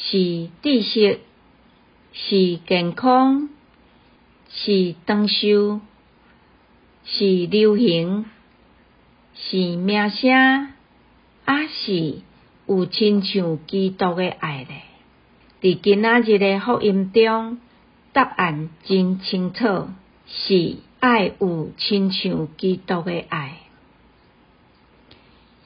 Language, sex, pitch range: Chinese, female, 185-225 Hz